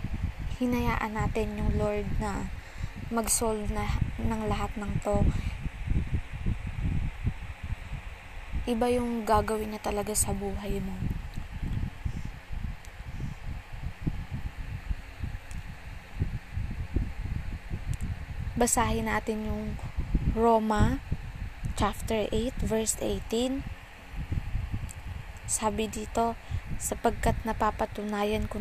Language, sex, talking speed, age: Filipino, female, 65 wpm, 20-39